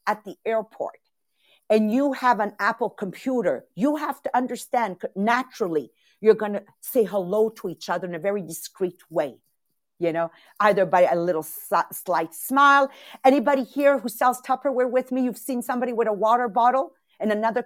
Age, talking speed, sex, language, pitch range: 50-69, 170 wpm, female, English, 210-280 Hz